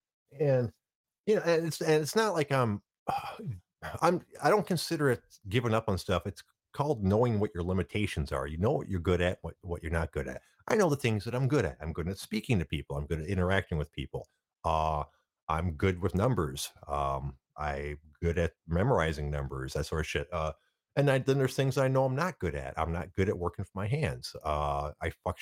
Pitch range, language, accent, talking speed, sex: 85-135 Hz, English, American, 225 wpm, male